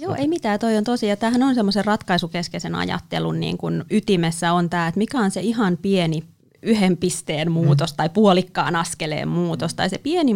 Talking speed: 190 wpm